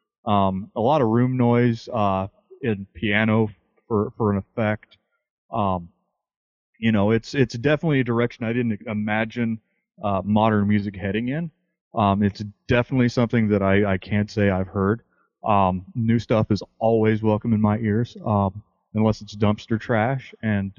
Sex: male